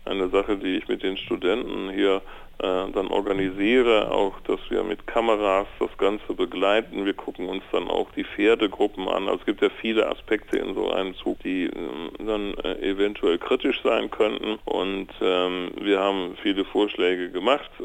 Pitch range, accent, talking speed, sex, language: 285-415 Hz, German, 175 wpm, male, German